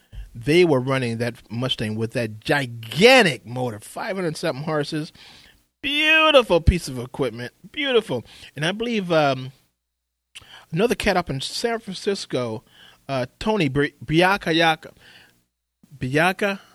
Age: 30-49